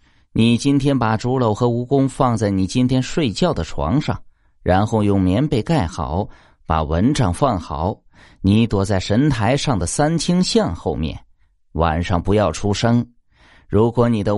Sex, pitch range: male, 85-130 Hz